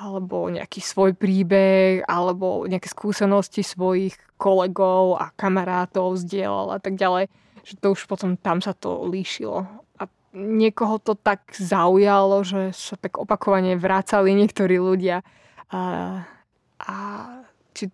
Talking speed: 130 wpm